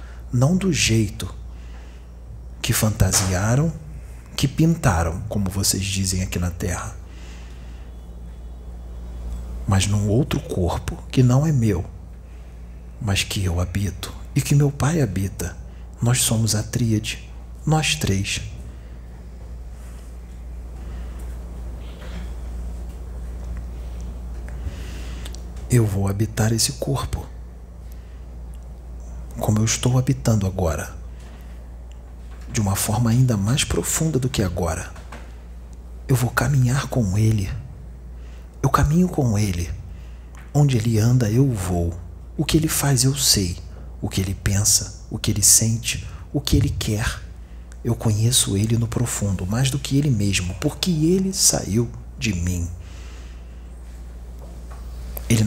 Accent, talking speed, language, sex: Brazilian, 110 wpm, Portuguese, male